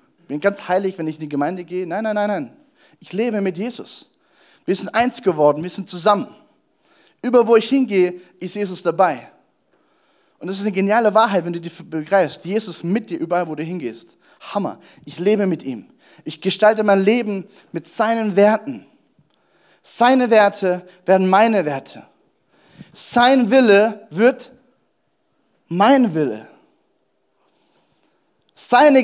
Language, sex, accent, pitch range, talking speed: German, male, German, 190-250 Hz, 145 wpm